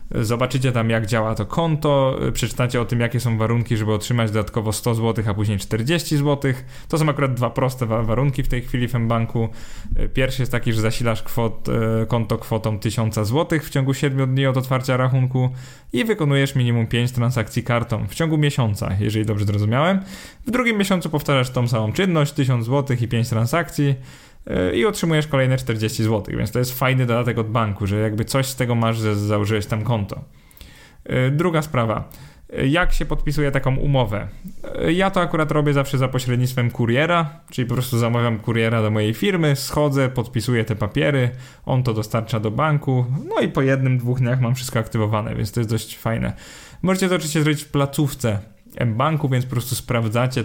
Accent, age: native, 20-39